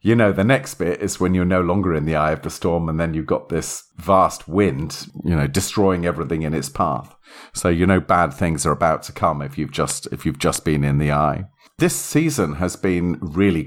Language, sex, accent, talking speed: English, male, British, 235 wpm